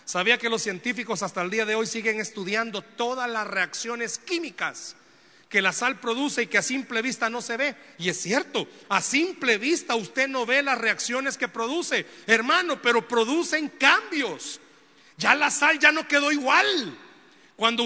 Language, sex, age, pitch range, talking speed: Spanish, male, 40-59, 195-260 Hz, 175 wpm